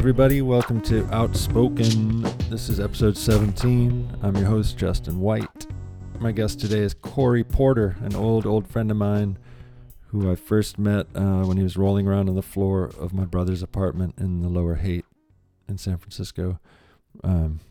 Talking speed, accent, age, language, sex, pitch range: 170 wpm, American, 40-59, English, male, 95-115 Hz